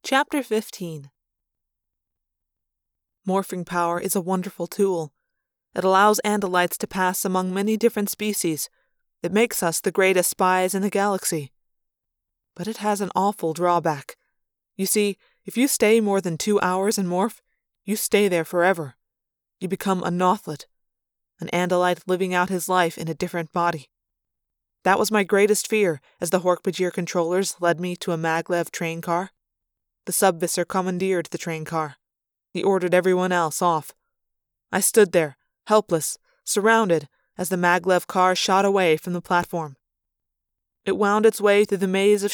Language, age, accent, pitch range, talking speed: English, 20-39, American, 170-195 Hz, 155 wpm